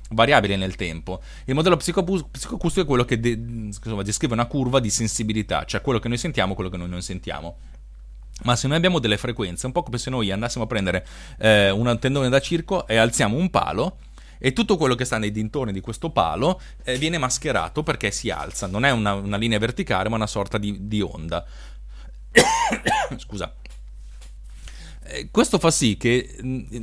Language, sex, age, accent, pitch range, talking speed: Italian, male, 30-49, native, 100-135 Hz, 185 wpm